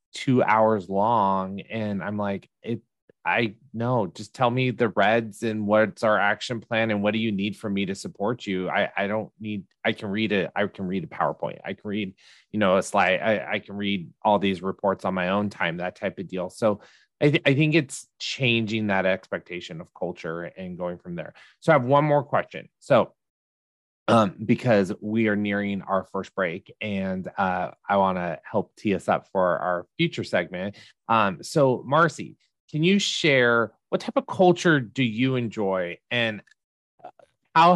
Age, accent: 20-39, American